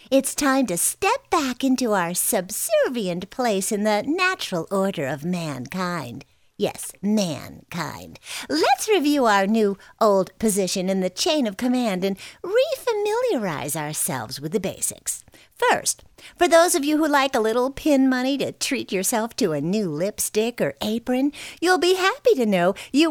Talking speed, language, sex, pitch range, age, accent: 155 wpm, English, female, 180-305 Hz, 50-69, American